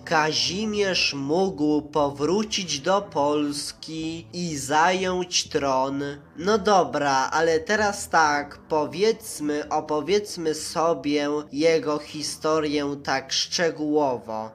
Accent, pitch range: native, 145-180 Hz